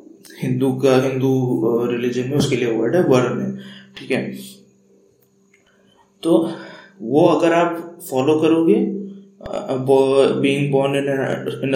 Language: Hindi